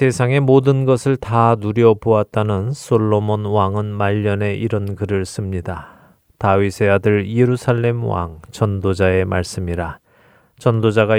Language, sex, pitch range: Korean, male, 95-125 Hz